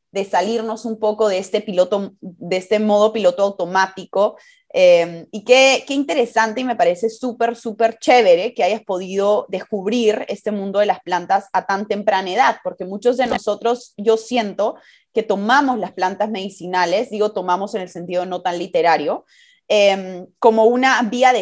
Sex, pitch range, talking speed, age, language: female, 195-255 Hz, 170 wpm, 20-39, Spanish